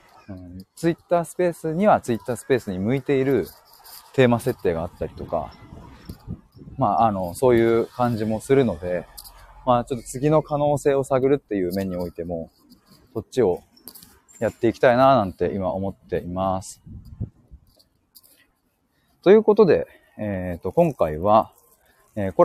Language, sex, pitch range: Japanese, male, 95-130 Hz